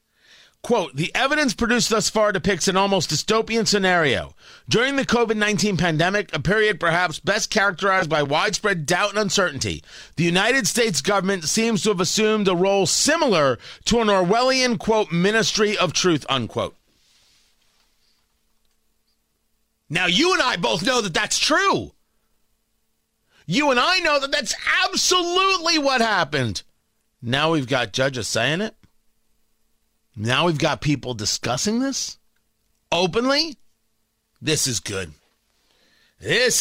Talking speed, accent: 130 wpm, American